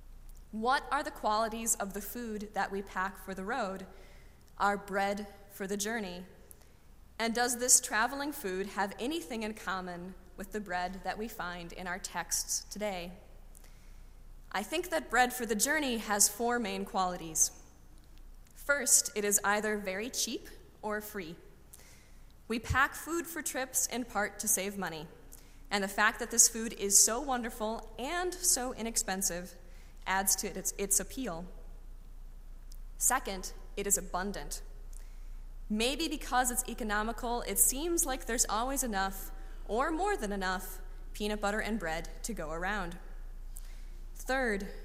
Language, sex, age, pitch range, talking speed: English, female, 20-39, 190-240 Hz, 145 wpm